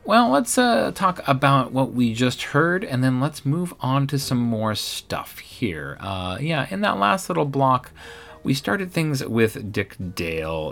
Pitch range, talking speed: 85-140 Hz, 180 wpm